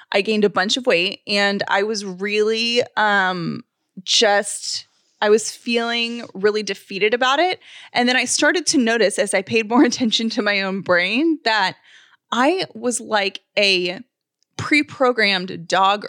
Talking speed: 155 wpm